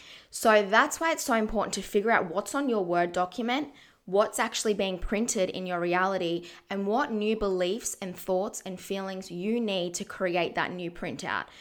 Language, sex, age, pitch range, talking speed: English, female, 20-39, 180-220 Hz, 185 wpm